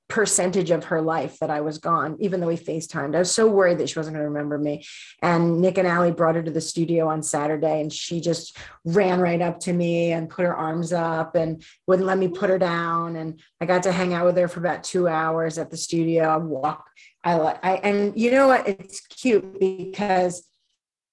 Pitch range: 170-205 Hz